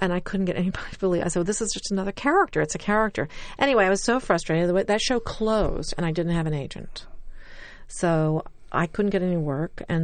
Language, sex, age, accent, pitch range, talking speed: English, female, 40-59, American, 160-190 Hz, 240 wpm